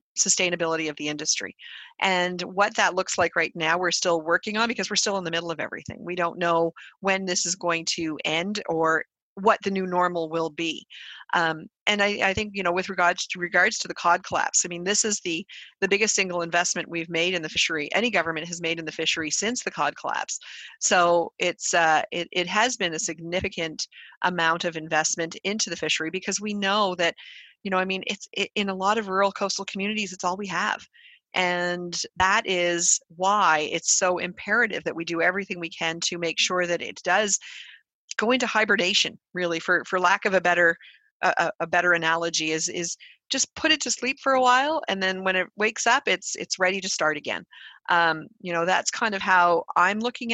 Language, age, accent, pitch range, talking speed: English, 40-59, American, 170-200 Hz, 215 wpm